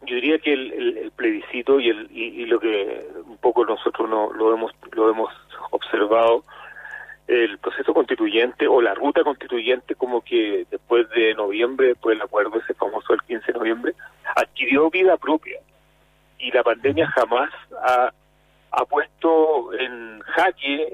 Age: 40-59